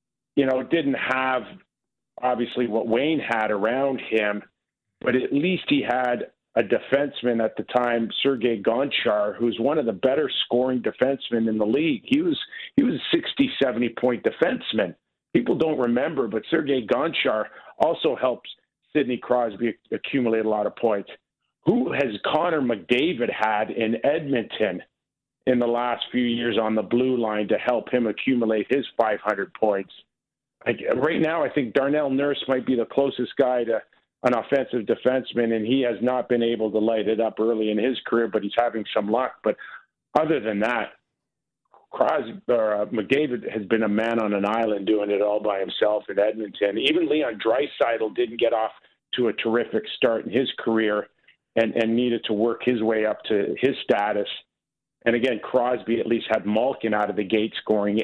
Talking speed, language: 175 wpm, English